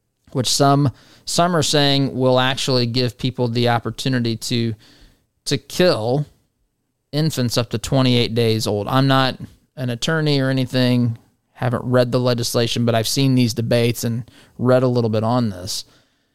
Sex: male